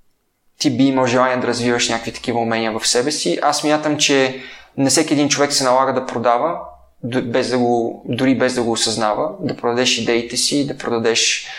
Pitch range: 120-140 Hz